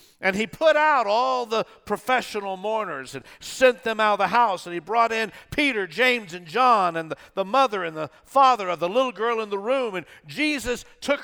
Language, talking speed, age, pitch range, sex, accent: English, 215 wpm, 50-69, 190-255 Hz, male, American